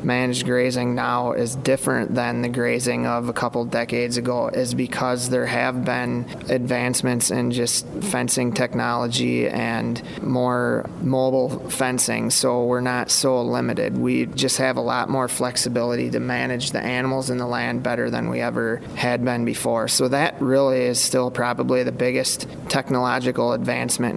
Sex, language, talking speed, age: male, English, 155 wpm, 30-49